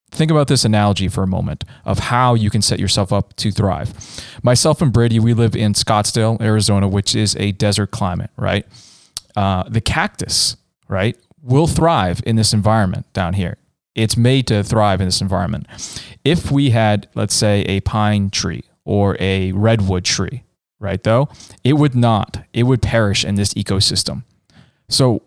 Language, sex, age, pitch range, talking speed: English, male, 20-39, 100-125 Hz, 170 wpm